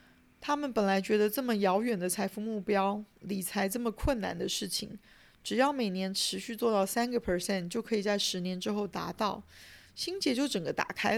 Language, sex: Chinese, female